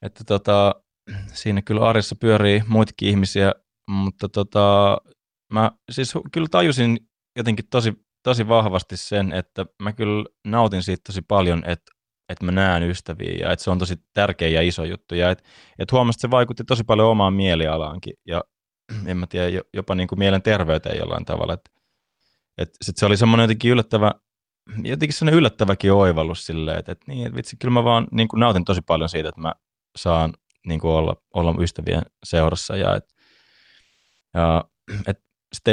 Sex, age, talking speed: male, 20-39, 165 wpm